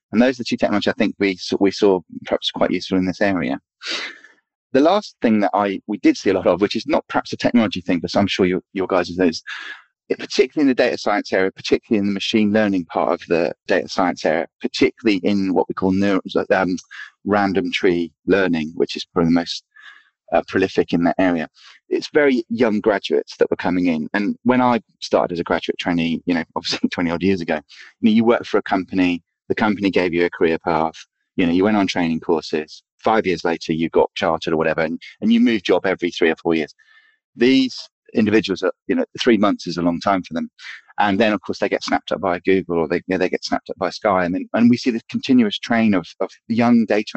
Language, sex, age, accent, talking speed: English, male, 30-49, British, 235 wpm